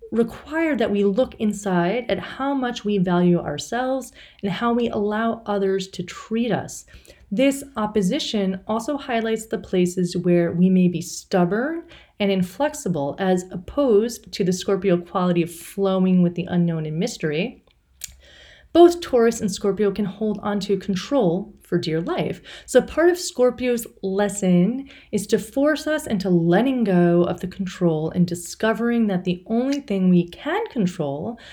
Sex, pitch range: female, 180-235 Hz